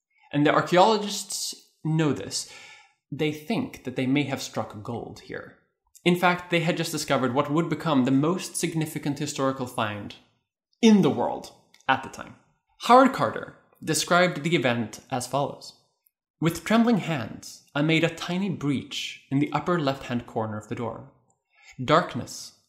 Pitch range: 130-170 Hz